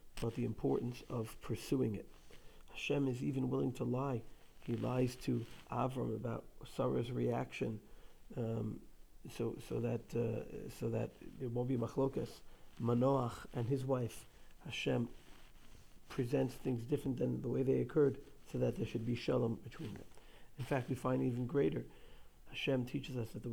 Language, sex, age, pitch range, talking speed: English, male, 50-69, 115-130 Hz, 160 wpm